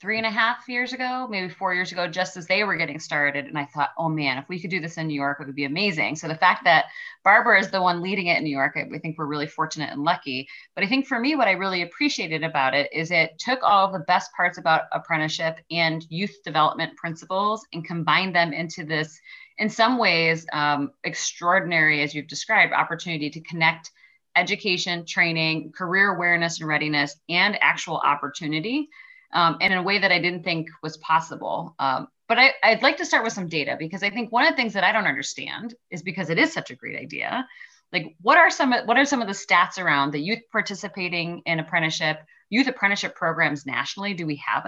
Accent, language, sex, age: American, English, female, 30-49